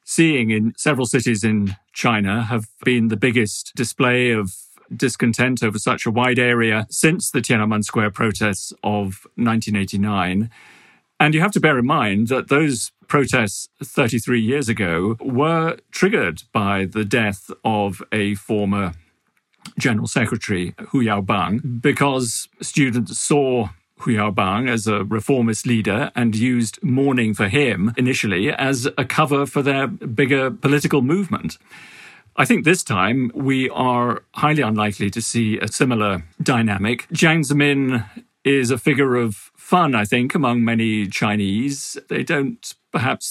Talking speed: 140 wpm